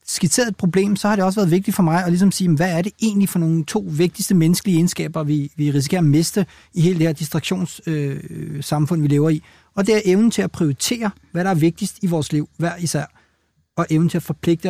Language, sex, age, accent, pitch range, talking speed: Danish, male, 30-49, native, 155-190 Hz, 240 wpm